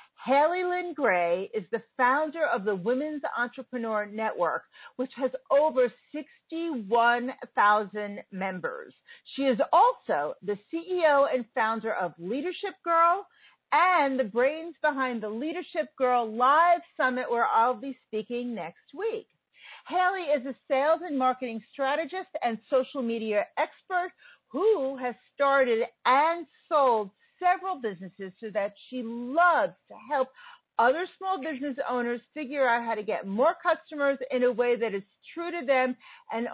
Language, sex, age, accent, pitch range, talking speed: English, female, 40-59, American, 235-305 Hz, 140 wpm